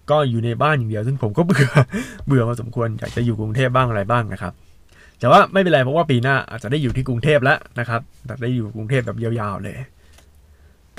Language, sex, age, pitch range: Thai, male, 20-39, 90-135 Hz